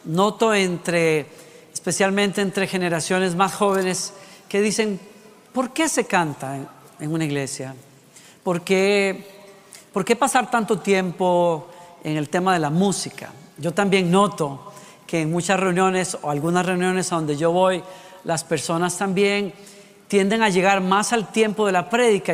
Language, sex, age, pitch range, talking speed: Spanish, female, 40-59, 180-235 Hz, 145 wpm